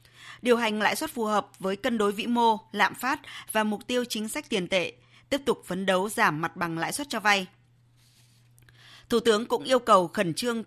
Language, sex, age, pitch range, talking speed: Vietnamese, female, 20-39, 170-225 Hz, 215 wpm